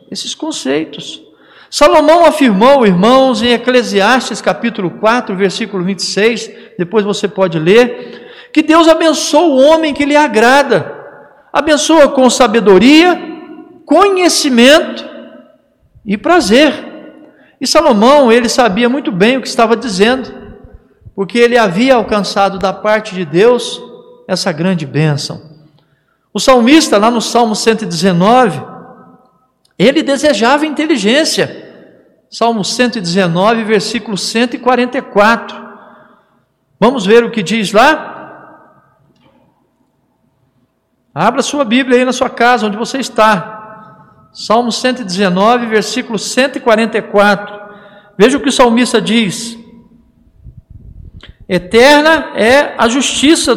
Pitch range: 210-285 Hz